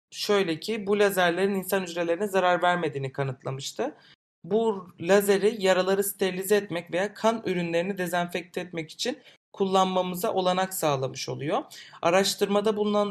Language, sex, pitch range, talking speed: Turkish, male, 165-195 Hz, 120 wpm